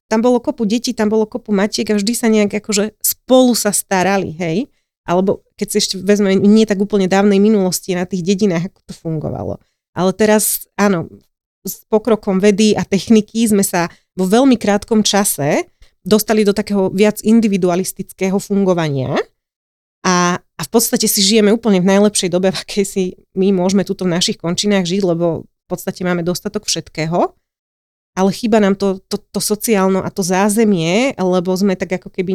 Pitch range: 175-205 Hz